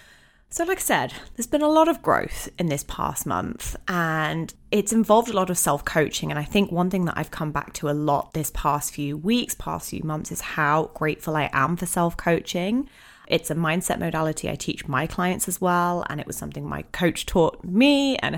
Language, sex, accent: English, female, British